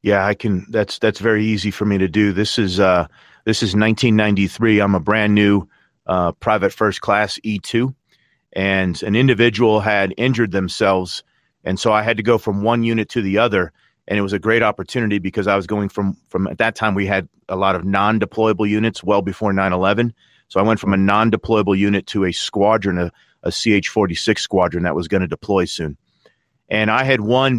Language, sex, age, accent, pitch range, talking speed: English, male, 40-59, American, 95-110 Hz, 205 wpm